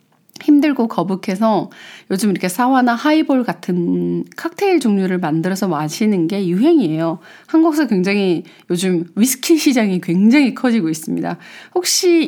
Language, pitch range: Korean, 180-280 Hz